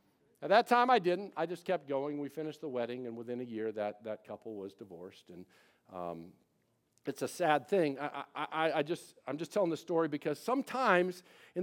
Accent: American